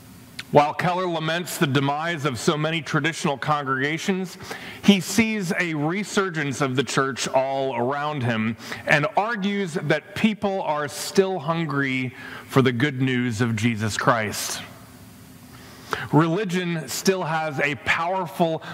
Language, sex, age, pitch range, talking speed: English, male, 30-49, 125-160 Hz, 125 wpm